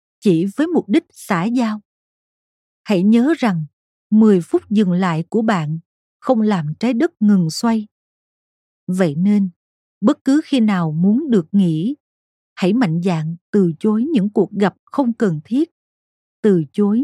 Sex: female